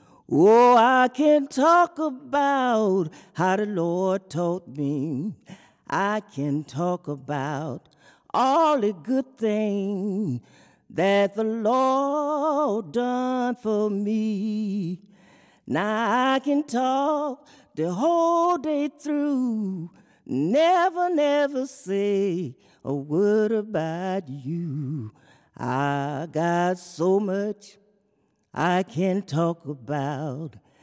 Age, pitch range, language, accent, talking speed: 40-59, 165-250 Hz, French, American, 90 wpm